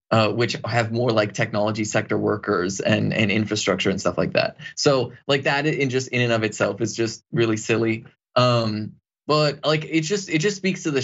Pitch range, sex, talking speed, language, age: 115-145 Hz, male, 205 wpm, English, 20-39